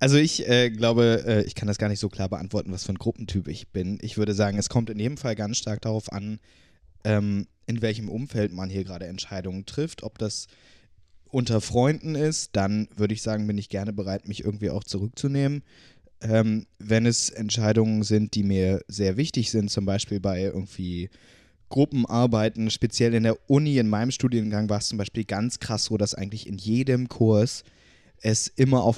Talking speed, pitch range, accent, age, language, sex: 195 wpm, 100-125 Hz, German, 20-39, German, male